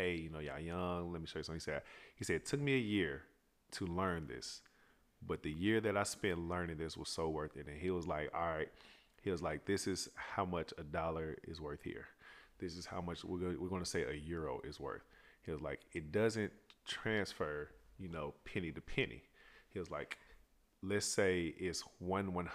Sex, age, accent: male, 30-49, American